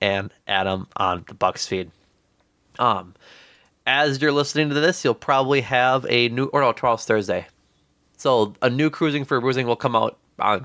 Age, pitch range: 20-39, 105-130 Hz